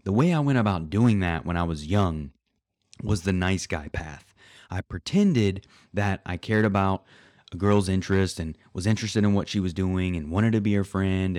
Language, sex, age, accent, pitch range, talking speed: English, male, 30-49, American, 85-110 Hz, 205 wpm